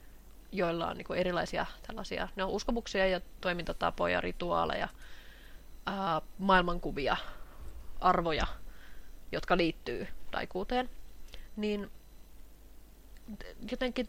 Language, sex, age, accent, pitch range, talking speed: Finnish, female, 20-39, native, 180-220 Hz, 80 wpm